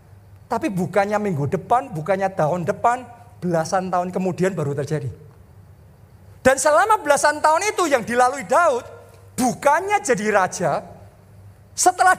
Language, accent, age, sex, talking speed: Indonesian, native, 40-59, male, 120 wpm